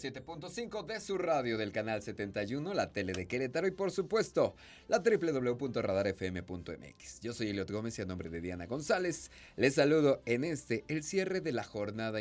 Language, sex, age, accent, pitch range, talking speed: Spanish, male, 30-49, Mexican, 95-155 Hz, 165 wpm